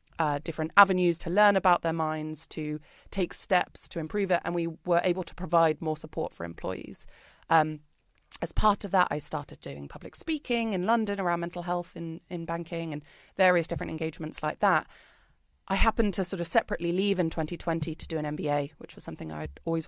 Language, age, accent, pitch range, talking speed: English, 20-39, British, 155-185 Hz, 200 wpm